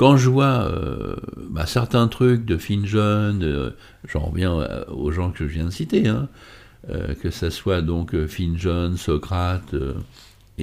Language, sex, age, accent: French, male, 60-79, French